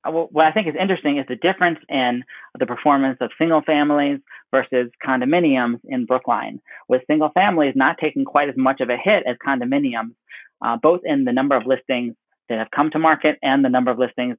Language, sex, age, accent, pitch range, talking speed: English, male, 40-59, American, 125-150 Hz, 200 wpm